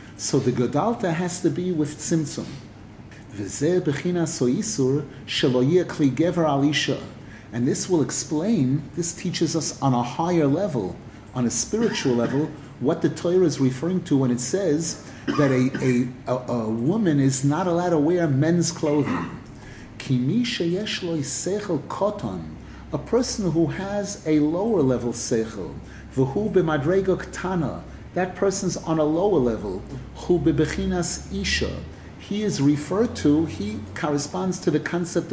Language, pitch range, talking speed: English, 125-175 Hz, 135 wpm